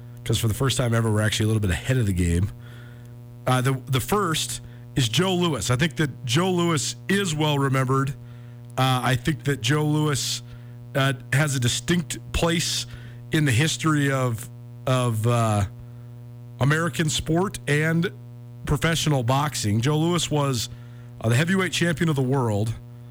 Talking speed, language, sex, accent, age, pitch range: 160 wpm, English, male, American, 40-59, 120-150 Hz